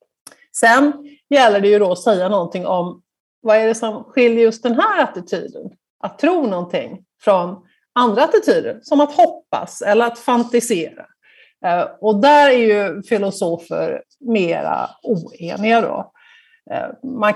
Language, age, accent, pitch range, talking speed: Swedish, 50-69, native, 195-275 Hz, 135 wpm